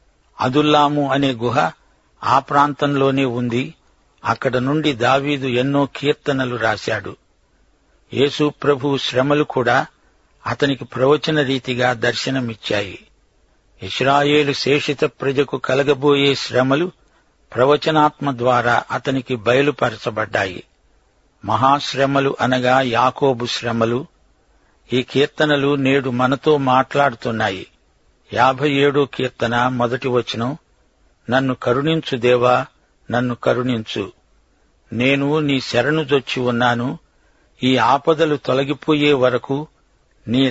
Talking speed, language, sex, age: 85 wpm, Telugu, male, 60-79